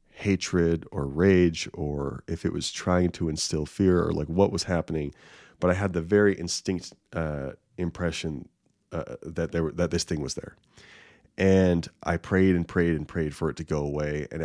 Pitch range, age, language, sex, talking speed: 80-100 Hz, 30-49, English, male, 190 wpm